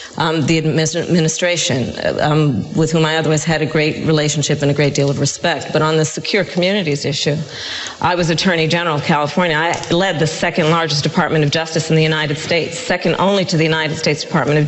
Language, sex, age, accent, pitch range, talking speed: English, female, 40-59, American, 160-205 Hz, 205 wpm